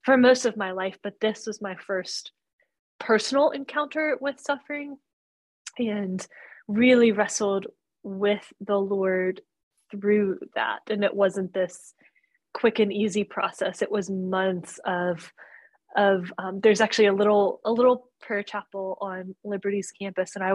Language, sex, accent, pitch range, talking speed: English, female, American, 190-230 Hz, 145 wpm